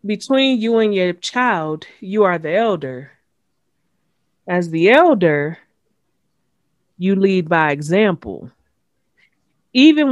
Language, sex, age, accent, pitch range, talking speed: English, female, 30-49, American, 165-215 Hz, 100 wpm